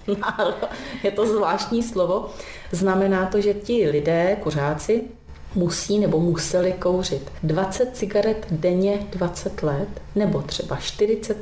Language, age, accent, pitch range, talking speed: Czech, 30-49, native, 160-185 Hz, 115 wpm